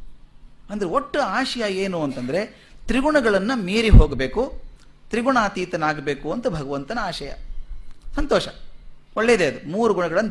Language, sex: Kannada, male